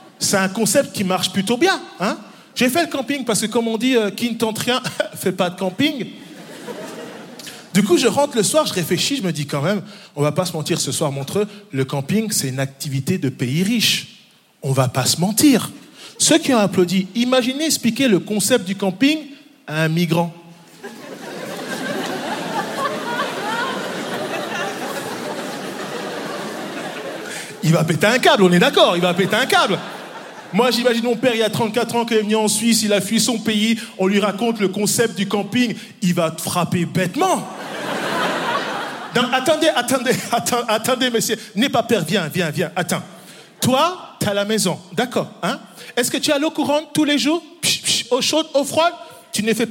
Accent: French